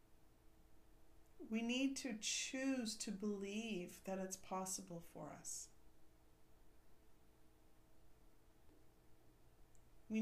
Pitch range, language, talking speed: 190-235 Hz, English, 70 wpm